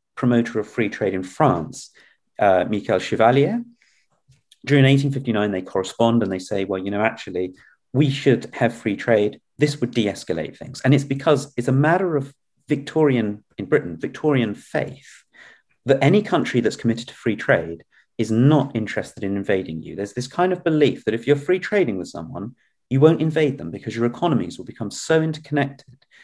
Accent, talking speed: British, 180 wpm